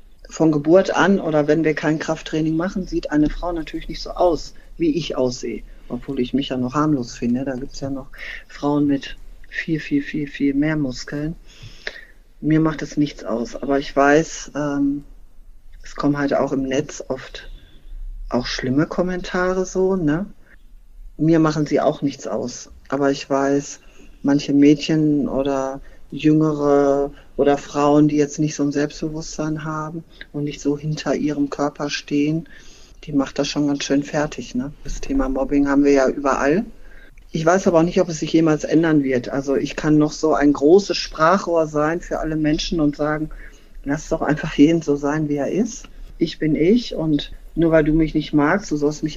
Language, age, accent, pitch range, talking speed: German, 40-59, German, 140-160 Hz, 185 wpm